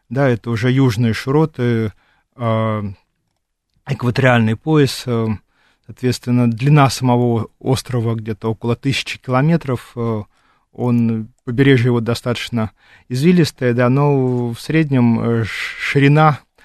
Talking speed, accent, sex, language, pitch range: 130 wpm, native, male, Russian, 115-130 Hz